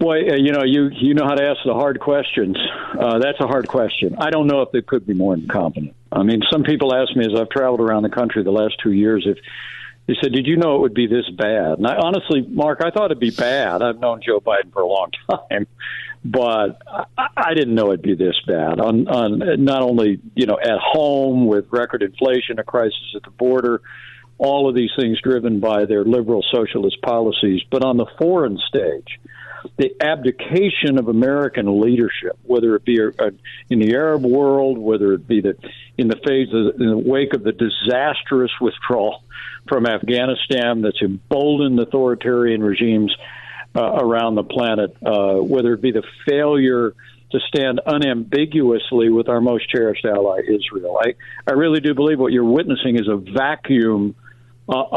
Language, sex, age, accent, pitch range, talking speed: English, male, 60-79, American, 115-140 Hz, 190 wpm